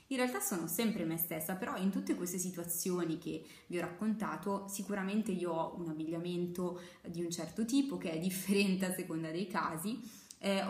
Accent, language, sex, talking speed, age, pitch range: native, Italian, female, 180 wpm, 20-39, 175-215 Hz